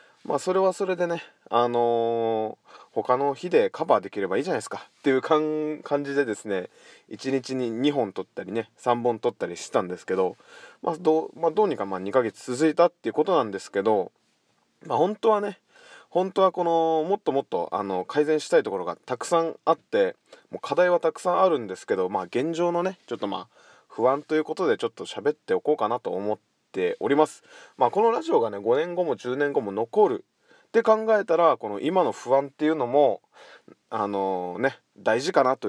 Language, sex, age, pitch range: Japanese, male, 20-39, 120-195 Hz